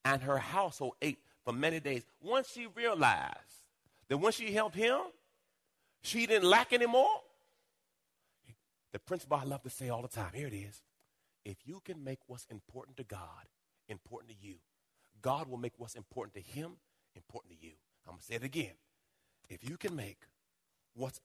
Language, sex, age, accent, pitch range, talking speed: English, male, 40-59, American, 105-165 Hz, 180 wpm